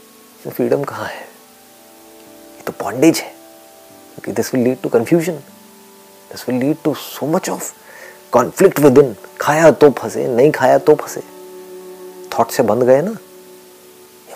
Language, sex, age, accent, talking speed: Hindi, male, 30-49, native, 130 wpm